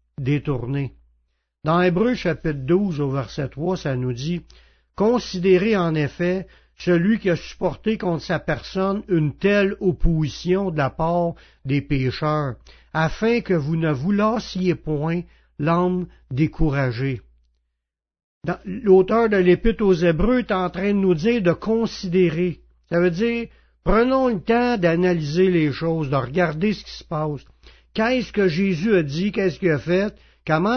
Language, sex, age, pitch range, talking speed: French, male, 60-79, 150-190 Hz, 150 wpm